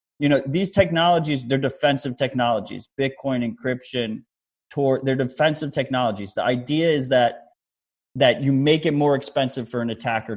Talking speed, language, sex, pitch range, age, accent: 145 wpm, English, male, 120-150 Hz, 30-49, American